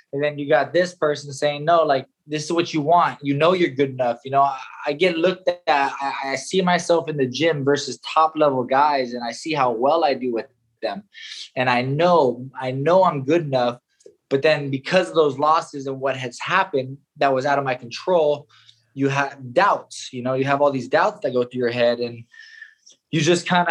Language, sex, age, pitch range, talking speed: English, male, 20-39, 140-175 Hz, 225 wpm